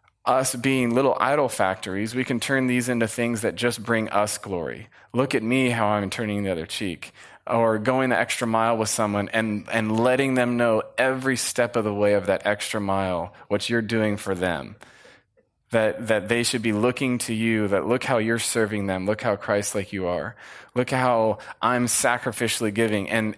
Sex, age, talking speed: male, 20-39, 200 wpm